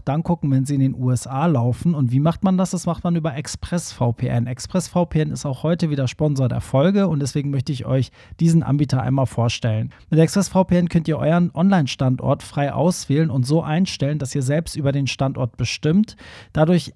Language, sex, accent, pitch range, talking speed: German, male, German, 135-170 Hz, 190 wpm